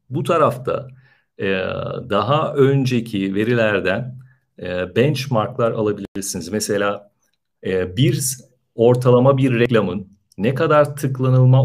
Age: 50-69